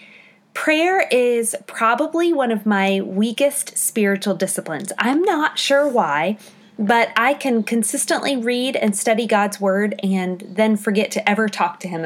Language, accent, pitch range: English, American, 200-245 Hz